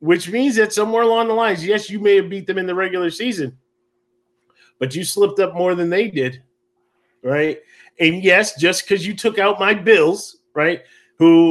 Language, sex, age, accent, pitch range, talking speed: English, male, 30-49, American, 120-175 Hz, 195 wpm